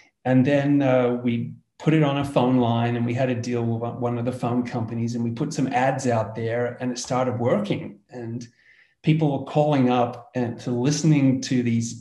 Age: 30-49